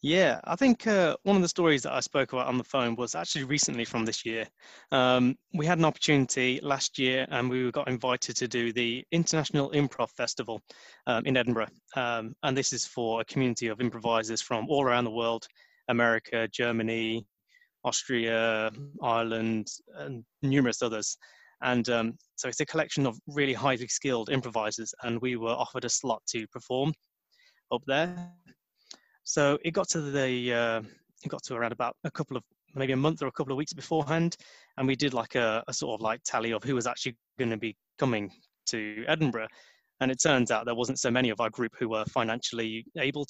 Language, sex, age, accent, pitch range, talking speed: English, male, 20-39, British, 115-140 Hz, 195 wpm